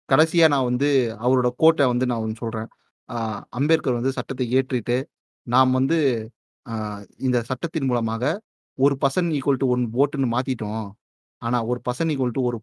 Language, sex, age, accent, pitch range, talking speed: Tamil, male, 30-49, native, 120-140 Hz, 110 wpm